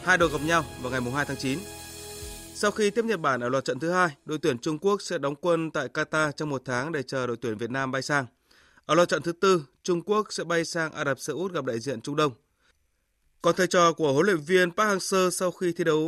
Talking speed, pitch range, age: 265 wpm, 140-175 Hz, 20-39